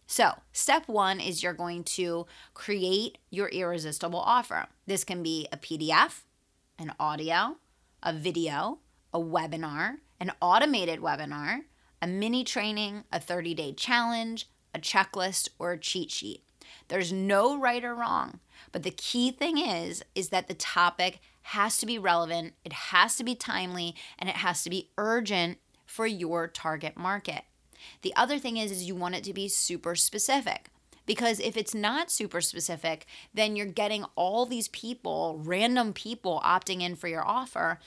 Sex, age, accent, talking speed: female, 20-39, American, 160 wpm